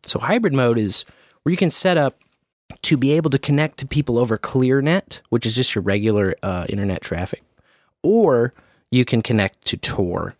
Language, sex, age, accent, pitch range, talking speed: English, male, 30-49, American, 100-130 Hz, 185 wpm